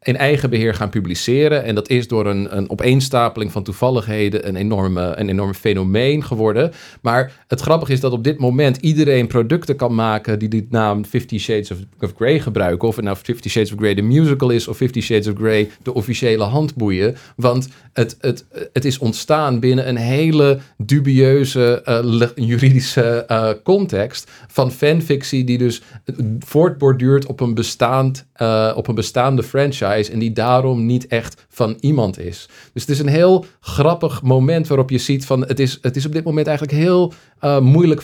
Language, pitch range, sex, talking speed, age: Dutch, 110-135 Hz, male, 180 wpm, 40-59